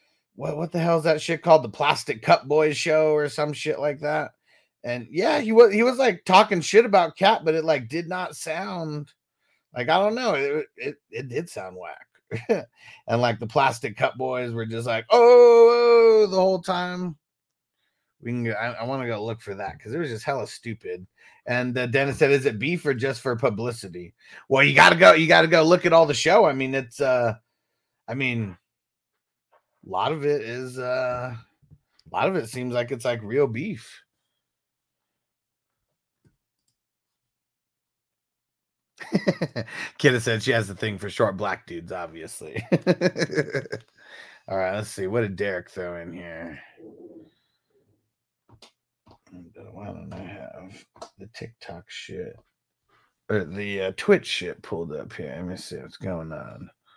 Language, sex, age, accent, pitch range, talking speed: English, male, 30-49, American, 115-170 Hz, 170 wpm